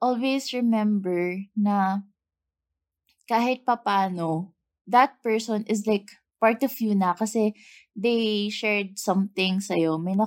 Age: 20-39